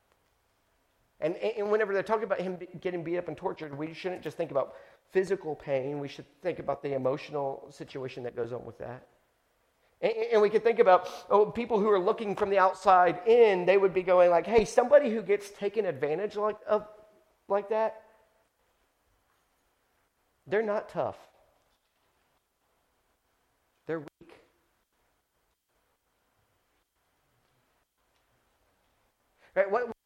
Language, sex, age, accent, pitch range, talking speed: English, male, 50-69, American, 175-275 Hz, 130 wpm